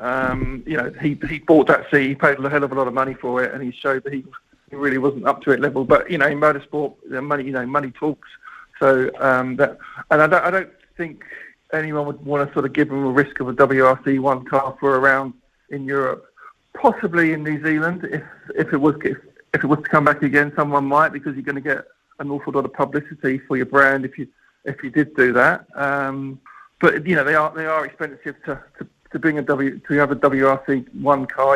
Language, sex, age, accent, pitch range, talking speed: English, male, 50-69, British, 135-155 Hz, 245 wpm